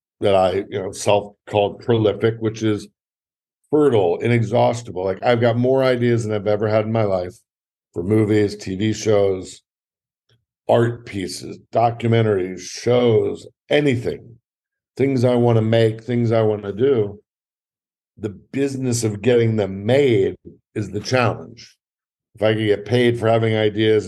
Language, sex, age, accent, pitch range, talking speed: English, male, 50-69, American, 105-125 Hz, 145 wpm